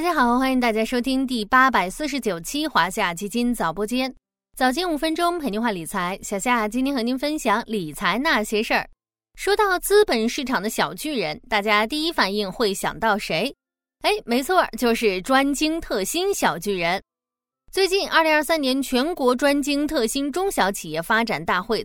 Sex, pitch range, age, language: female, 205-295 Hz, 20-39, Chinese